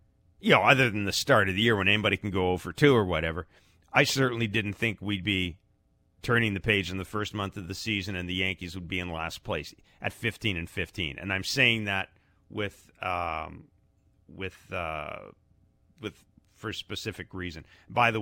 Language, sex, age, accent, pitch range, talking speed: English, male, 40-59, American, 80-100 Hz, 200 wpm